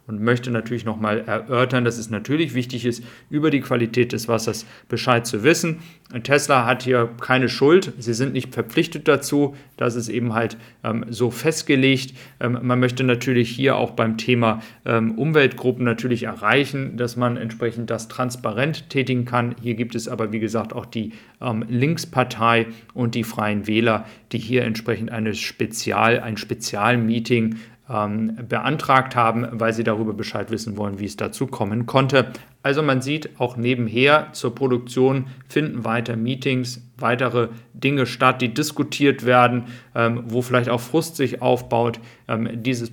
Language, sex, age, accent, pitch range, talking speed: German, male, 40-59, German, 115-135 Hz, 160 wpm